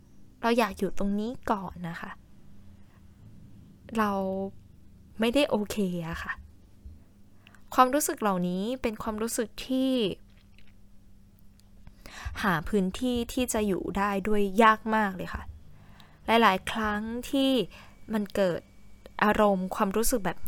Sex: female